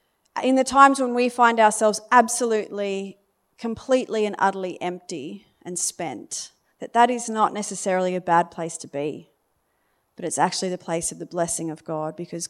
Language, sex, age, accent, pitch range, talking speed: English, female, 30-49, Australian, 175-215 Hz, 170 wpm